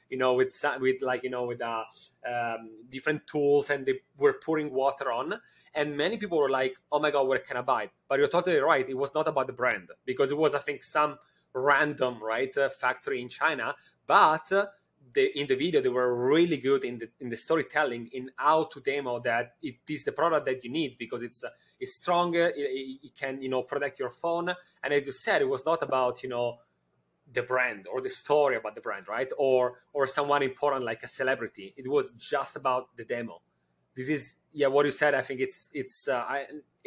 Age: 30-49